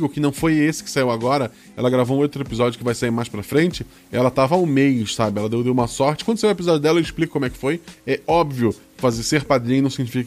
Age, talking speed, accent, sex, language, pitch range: 20-39, 275 wpm, Brazilian, male, Portuguese, 130-195 Hz